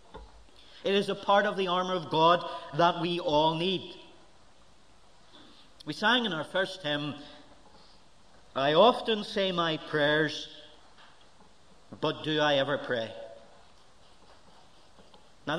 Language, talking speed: English, 115 wpm